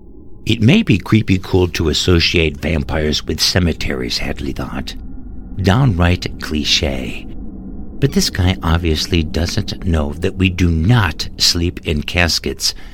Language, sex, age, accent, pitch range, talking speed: English, male, 60-79, American, 75-95 Hz, 120 wpm